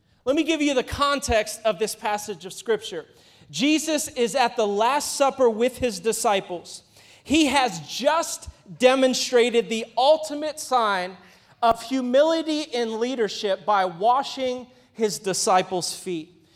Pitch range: 195-265 Hz